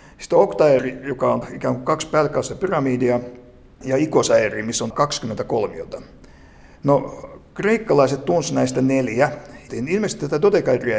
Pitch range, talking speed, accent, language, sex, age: 120-155 Hz, 135 wpm, native, Finnish, male, 60-79